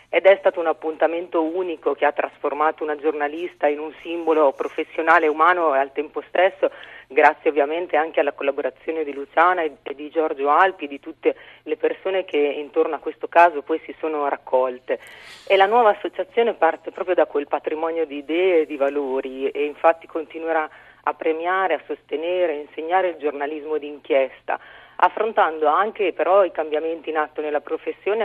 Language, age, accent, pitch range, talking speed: Italian, 40-59, native, 150-185 Hz, 170 wpm